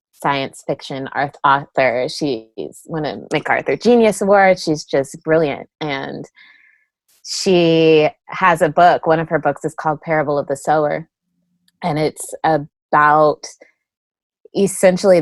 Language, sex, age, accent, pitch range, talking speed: English, female, 20-39, American, 145-170 Hz, 120 wpm